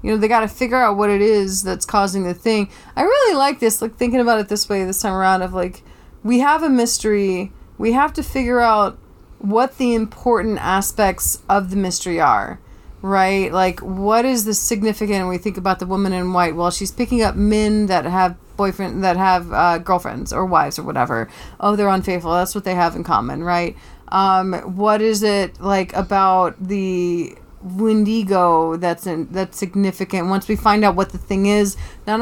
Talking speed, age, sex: 195 wpm, 30-49, female